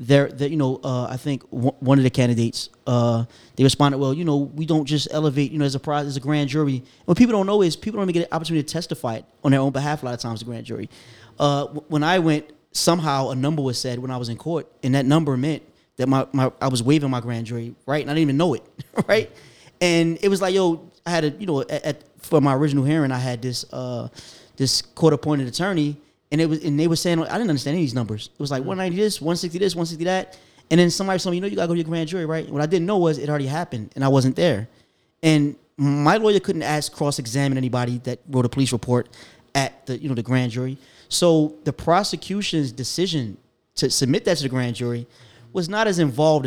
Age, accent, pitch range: 30-49, American, 130-160 Hz